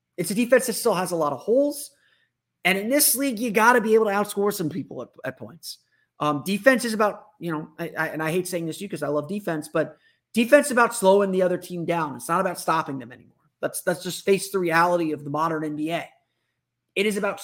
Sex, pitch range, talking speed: male, 155-210 Hz, 255 wpm